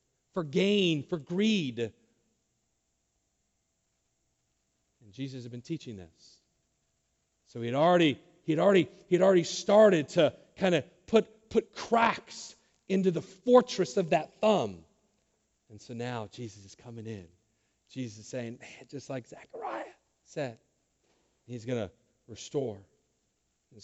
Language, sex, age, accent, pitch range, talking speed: English, male, 40-59, American, 120-185 Hz, 125 wpm